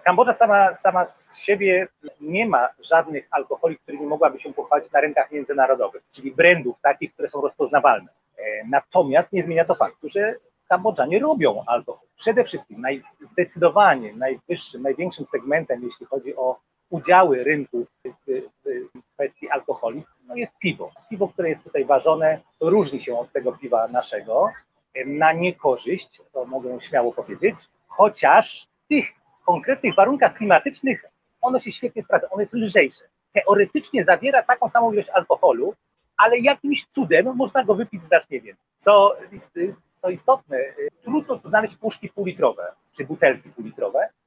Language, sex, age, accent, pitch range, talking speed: Polish, male, 40-59, native, 155-245 Hz, 145 wpm